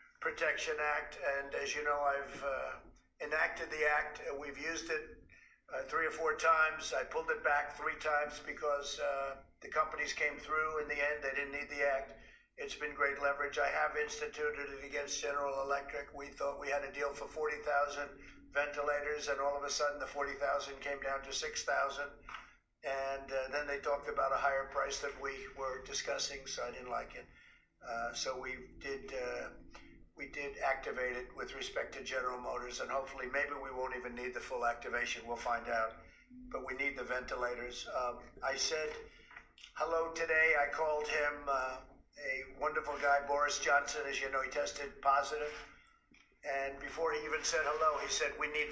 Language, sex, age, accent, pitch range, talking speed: English, male, 50-69, American, 135-150 Hz, 185 wpm